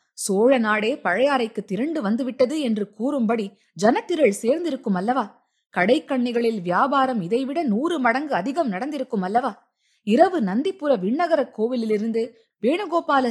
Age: 20-39